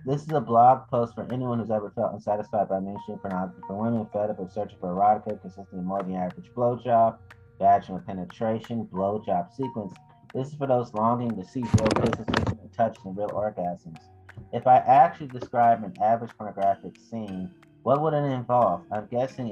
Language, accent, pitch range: English, American, 105-125 Hz